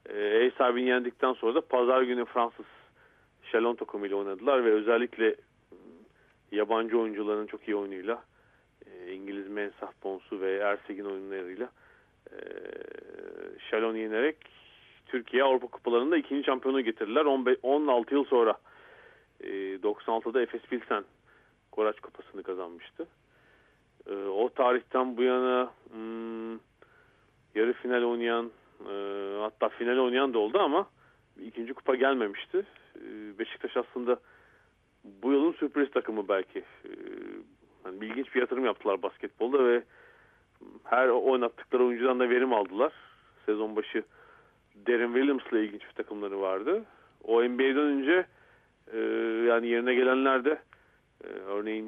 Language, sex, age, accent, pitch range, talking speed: Turkish, male, 40-59, native, 110-150 Hz, 115 wpm